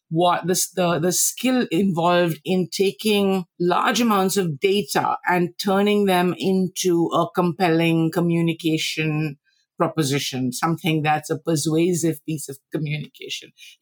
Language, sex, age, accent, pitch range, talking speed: English, female, 50-69, Indian, 155-190 Hz, 120 wpm